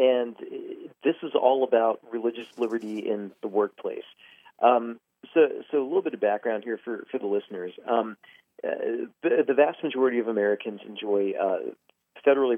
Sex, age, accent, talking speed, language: male, 40-59, American, 160 wpm, English